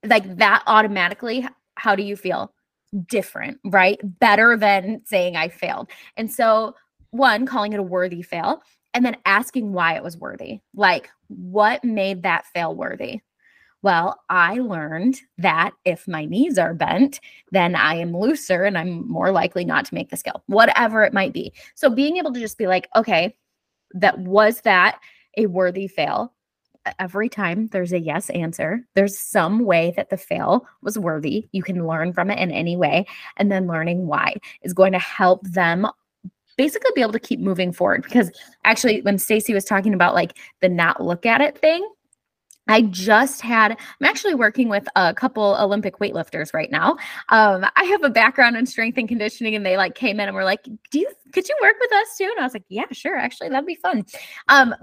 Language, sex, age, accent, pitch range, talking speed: English, female, 20-39, American, 185-255 Hz, 195 wpm